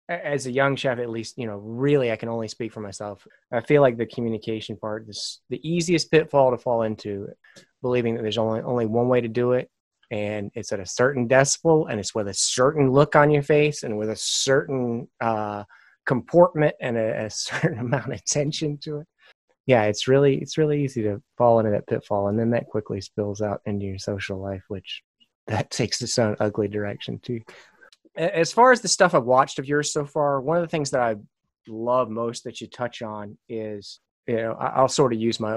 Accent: American